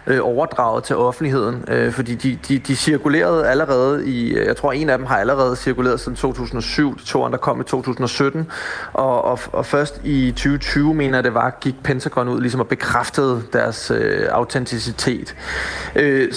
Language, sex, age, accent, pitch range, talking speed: Danish, male, 30-49, native, 125-145 Hz, 165 wpm